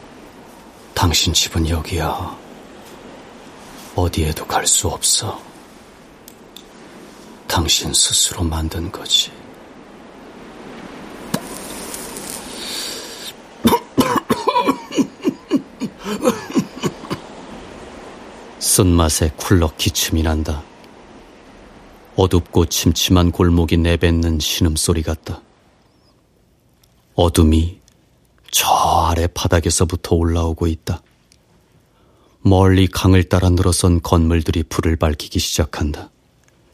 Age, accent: 40-59, native